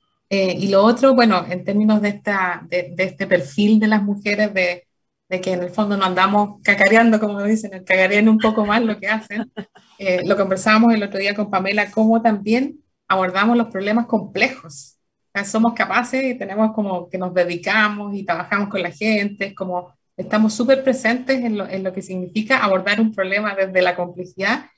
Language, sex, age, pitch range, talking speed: Spanish, female, 30-49, 185-220 Hz, 190 wpm